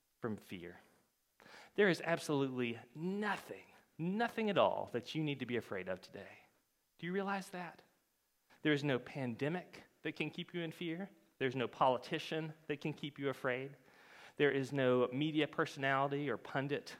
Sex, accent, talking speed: male, American, 160 wpm